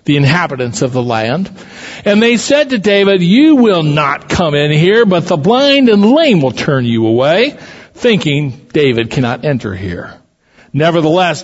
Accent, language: American, English